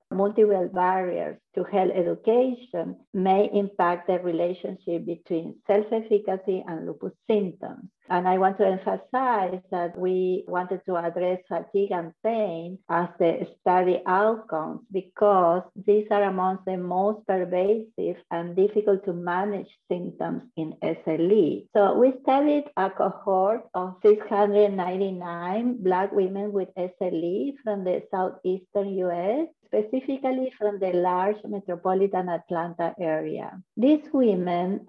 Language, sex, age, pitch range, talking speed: English, female, 50-69, 180-210 Hz, 120 wpm